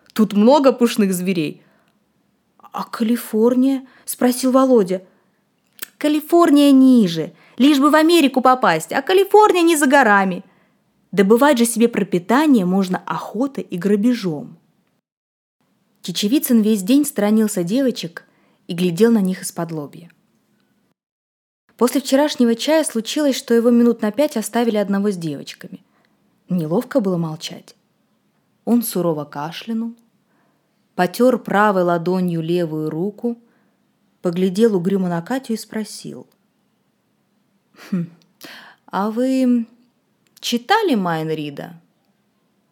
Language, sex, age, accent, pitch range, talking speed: Russian, female, 20-39, native, 190-245 Hz, 105 wpm